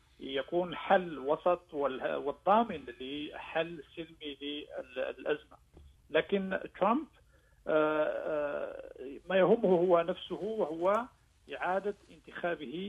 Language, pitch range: Arabic, 140-190 Hz